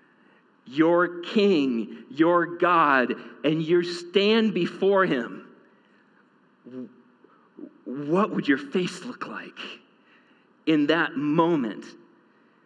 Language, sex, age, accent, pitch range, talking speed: English, male, 40-59, American, 145-190 Hz, 85 wpm